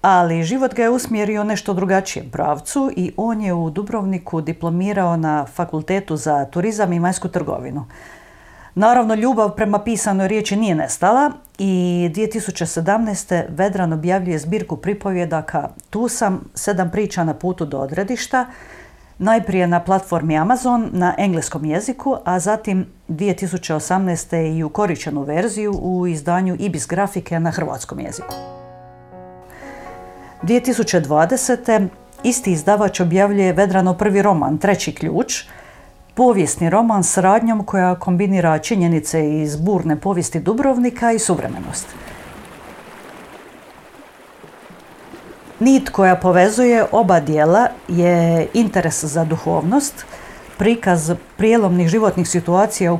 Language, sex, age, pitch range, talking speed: Croatian, female, 50-69, 165-210 Hz, 110 wpm